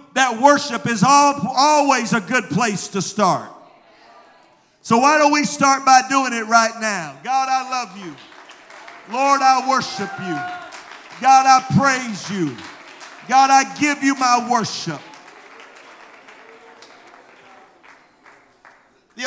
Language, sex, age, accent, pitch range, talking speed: English, male, 50-69, American, 230-280 Hz, 120 wpm